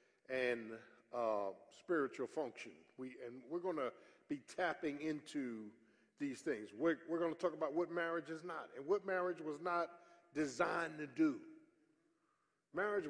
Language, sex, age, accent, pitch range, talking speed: English, male, 50-69, American, 140-195 Hz, 145 wpm